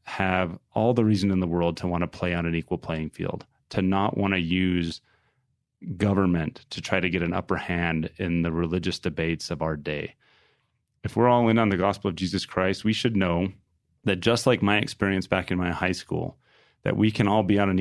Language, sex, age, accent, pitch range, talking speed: English, male, 30-49, American, 85-105 Hz, 220 wpm